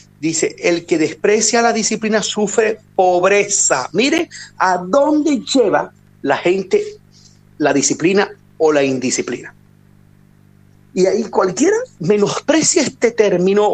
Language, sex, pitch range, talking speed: Spanish, male, 195-295 Hz, 110 wpm